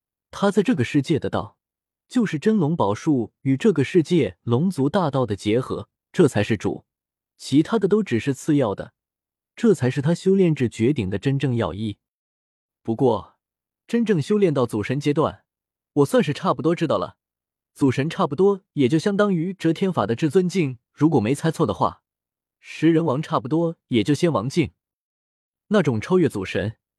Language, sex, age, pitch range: Chinese, male, 20-39, 120-170 Hz